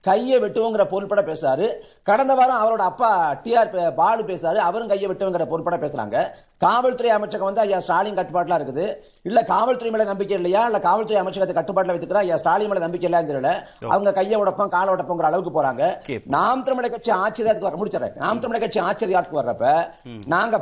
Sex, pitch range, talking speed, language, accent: male, 180-230 Hz, 145 wpm, Tamil, native